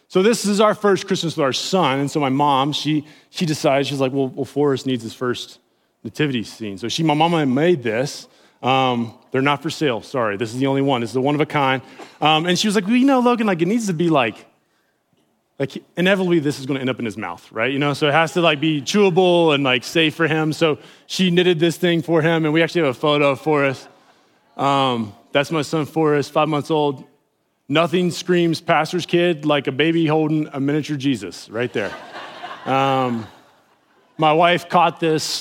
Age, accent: 20-39, American